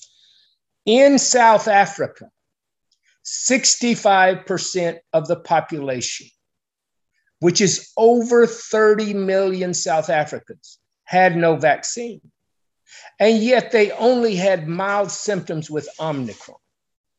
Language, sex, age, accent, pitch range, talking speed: English, male, 50-69, American, 165-210 Hz, 90 wpm